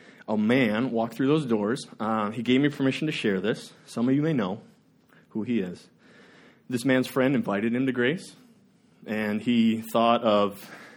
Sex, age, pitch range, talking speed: male, 20-39, 115-165 Hz, 180 wpm